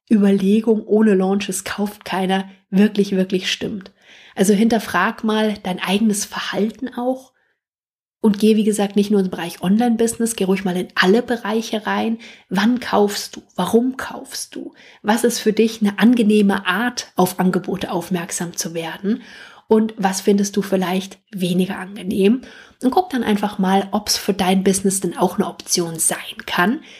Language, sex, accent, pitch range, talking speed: German, female, German, 190-225 Hz, 160 wpm